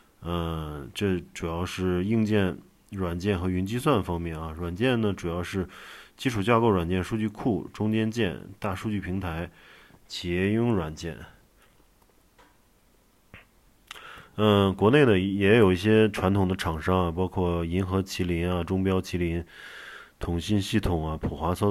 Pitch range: 85-105 Hz